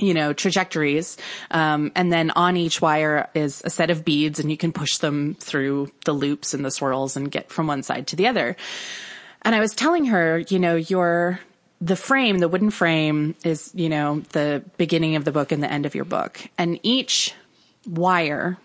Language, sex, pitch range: English, female, 155-190 Hz